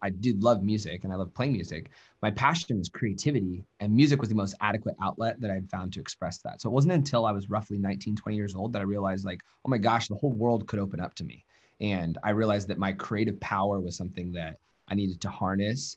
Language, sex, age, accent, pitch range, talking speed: English, male, 20-39, American, 95-110 Hz, 250 wpm